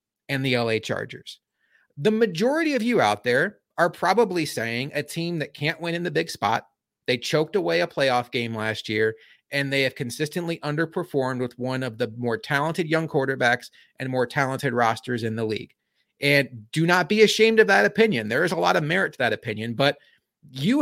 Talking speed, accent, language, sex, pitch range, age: 200 wpm, American, English, male, 130-180 Hz, 30-49